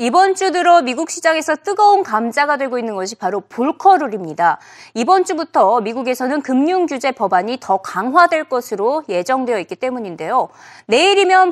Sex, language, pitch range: female, Korean, 245-365 Hz